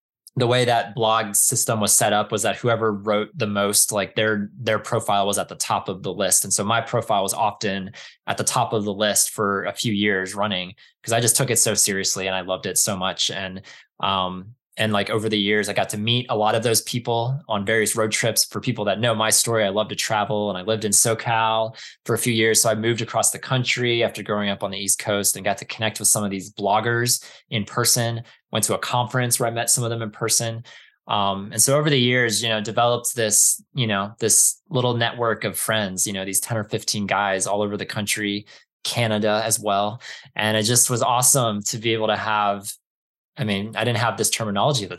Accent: American